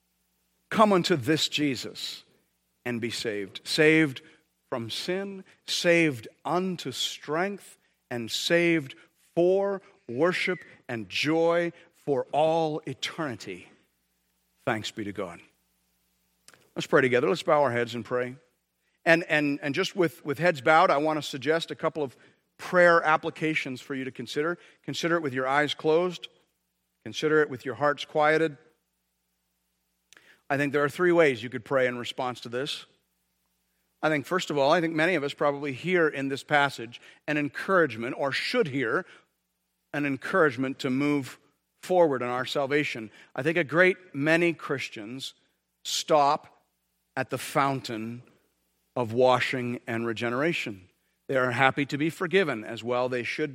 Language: English